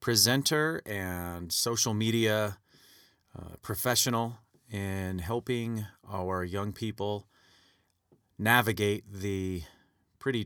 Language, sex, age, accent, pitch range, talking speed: English, male, 30-49, American, 95-110 Hz, 80 wpm